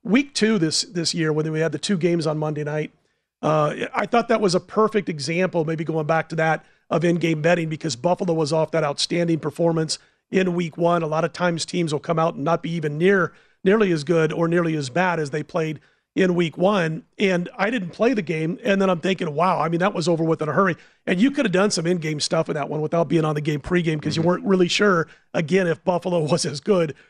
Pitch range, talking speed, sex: 160-200 Hz, 255 wpm, male